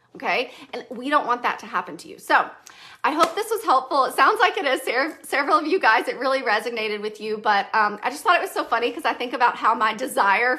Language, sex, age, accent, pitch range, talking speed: English, female, 40-59, American, 240-300 Hz, 260 wpm